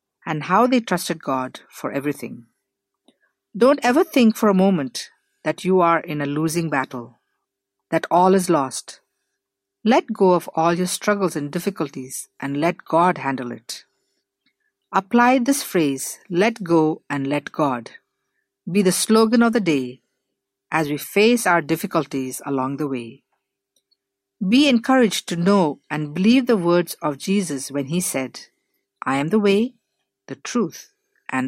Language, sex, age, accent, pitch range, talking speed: English, female, 50-69, Indian, 140-215 Hz, 150 wpm